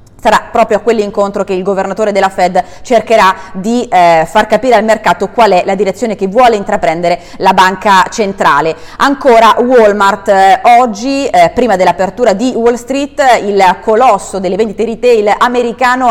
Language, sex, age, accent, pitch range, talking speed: Italian, female, 30-49, native, 190-240 Hz, 155 wpm